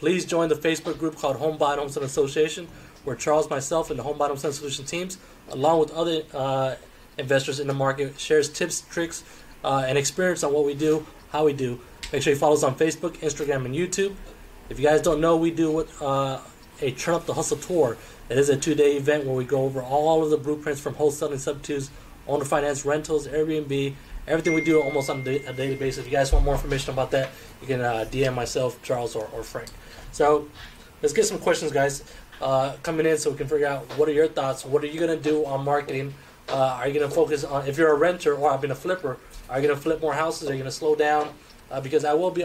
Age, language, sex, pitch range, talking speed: 20-39, English, male, 135-155 Hz, 245 wpm